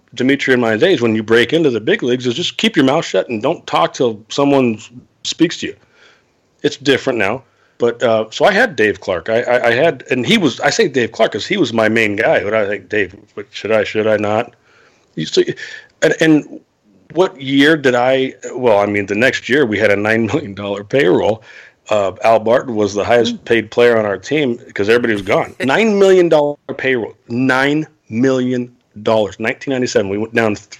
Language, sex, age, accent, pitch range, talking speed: English, male, 40-59, American, 110-140 Hz, 210 wpm